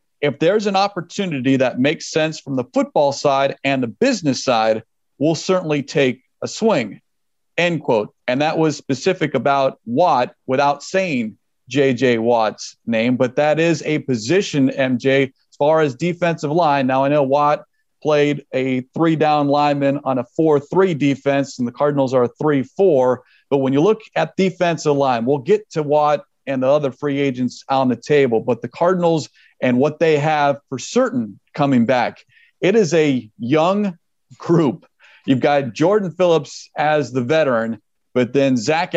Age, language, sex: 40-59, English, male